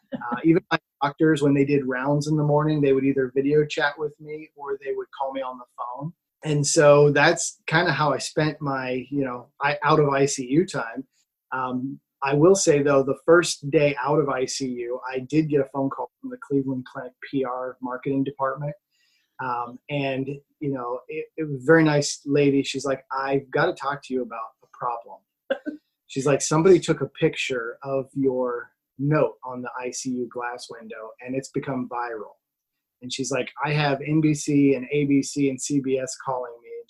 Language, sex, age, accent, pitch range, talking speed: English, male, 20-39, American, 130-150 Hz, 195 wpm